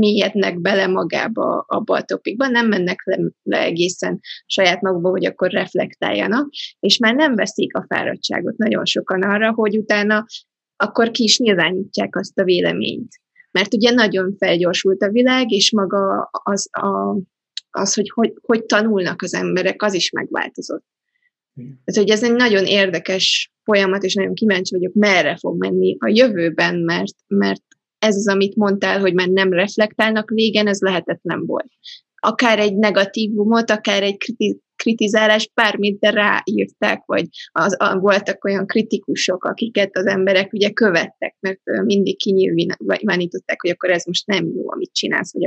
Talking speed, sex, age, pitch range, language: 150 wpm, female, 20-39, 185-220 Hz, Hungarian